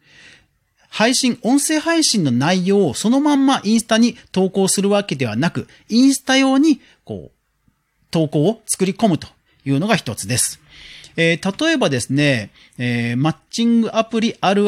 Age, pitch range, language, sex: 40-59, 135-225 Hz, Japanese, male